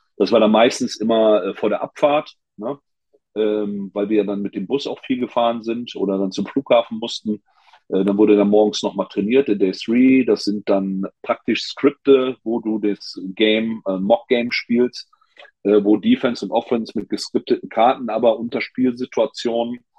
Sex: male